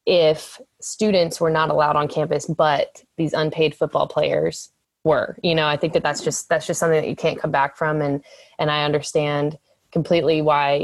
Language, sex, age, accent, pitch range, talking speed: English, female, 20-39, American, 155-180 Hz, 195 wpm